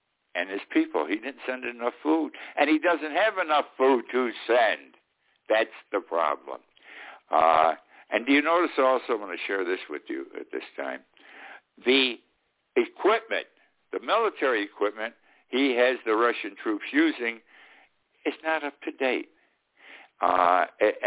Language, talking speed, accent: English, 150 wpm, American